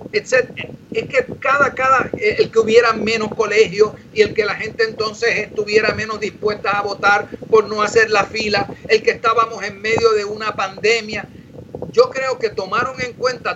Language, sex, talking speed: Spanish, male, 175 wpm